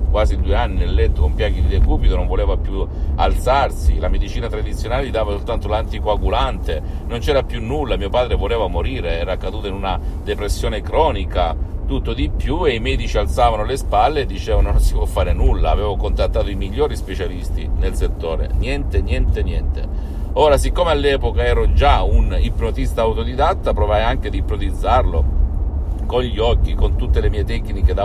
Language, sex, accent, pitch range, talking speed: Italian, male, native, 75-95 Hz, 175 wpm